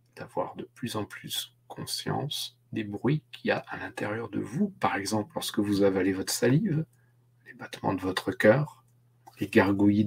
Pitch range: 110-125 Hz